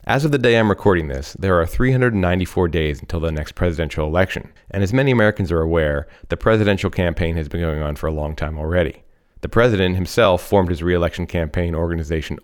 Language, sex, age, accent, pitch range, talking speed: English, male, 30-49, American, 80-100 Hz, 205 wpm